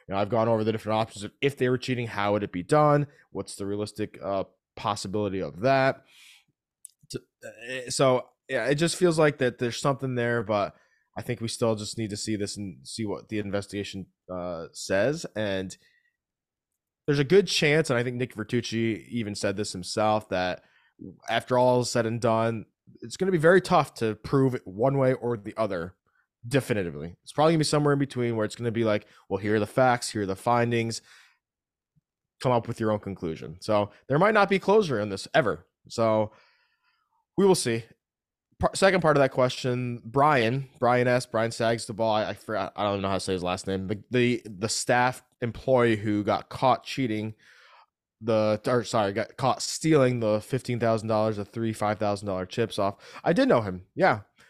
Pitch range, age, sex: 105-130 Hz, 20-39, male